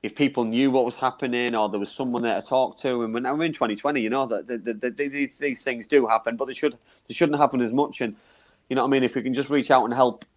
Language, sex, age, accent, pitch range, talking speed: English, male, 30-49, British, 115-135 Hz, 300 wpm